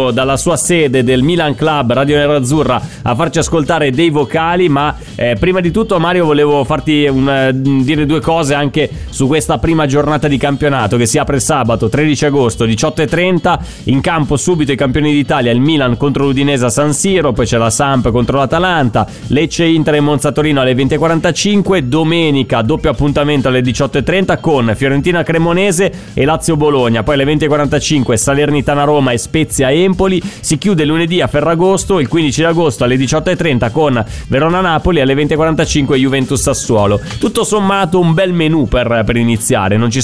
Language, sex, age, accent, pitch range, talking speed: Italian, male, 30-49, native, 125-160 Hz, 155 wpm